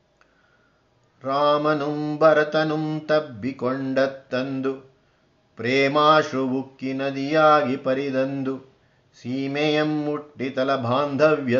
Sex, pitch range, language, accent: male, 130-155 Hz, Kannada, native